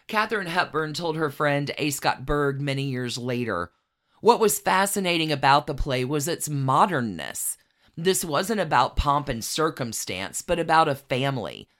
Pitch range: 125-155 Hz